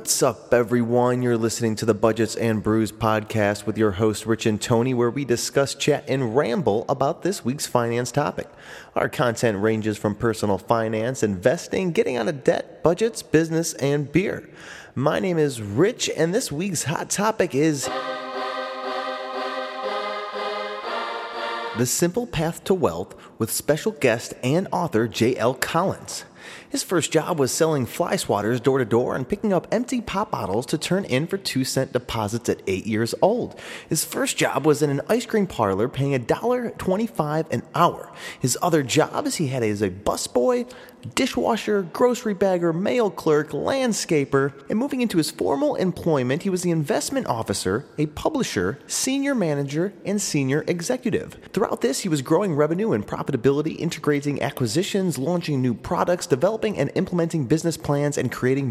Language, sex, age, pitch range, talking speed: English, male, 30-49, 115-170 Hz, 165 wpm